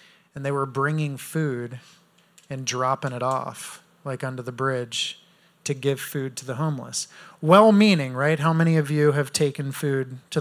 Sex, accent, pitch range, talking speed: male, American, 140-175 Hz, 165 wpm